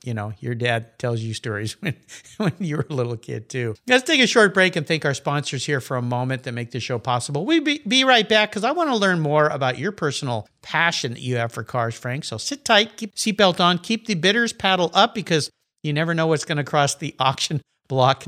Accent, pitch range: American, 125-205 Hz